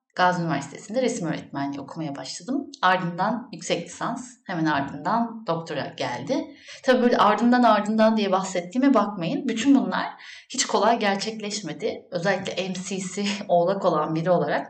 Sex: female